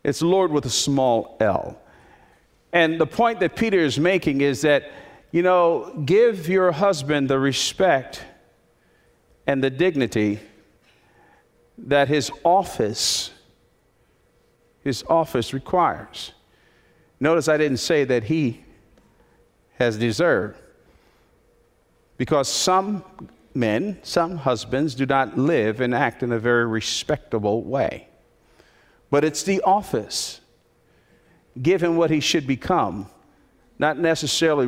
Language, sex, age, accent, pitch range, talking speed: English, male, 50-69, American, 130-170 Hz, 110 wpm